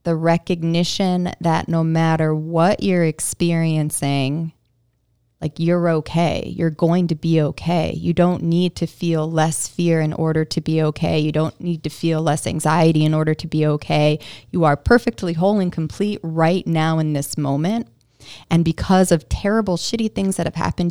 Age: 20-39